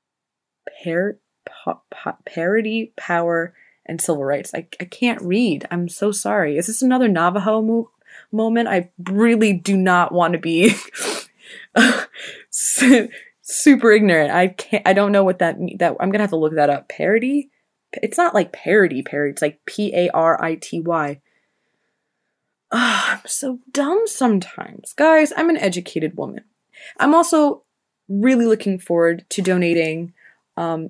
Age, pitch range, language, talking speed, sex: 20-39, 165-215 Hz, English, 140 wpm, female